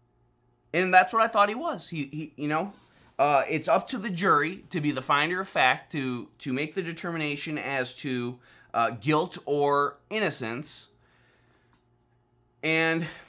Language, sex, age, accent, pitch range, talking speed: English, male, 20-39, American, 125-180 Hz, 160 wpm